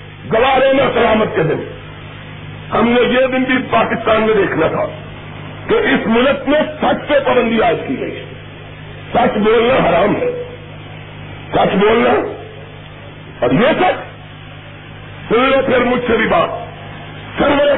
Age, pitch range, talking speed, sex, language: 50-69, 240-360 Hz, 135 wpm, male, Urdu